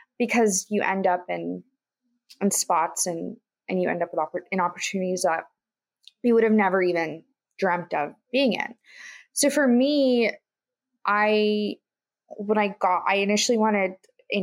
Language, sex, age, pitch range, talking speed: English, female, 20-39, 180-235 Hz, 155 wpm